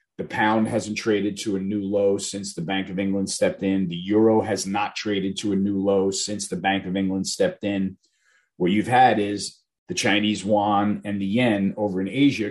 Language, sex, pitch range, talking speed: English, male, 100-115 Hz, 210 wpm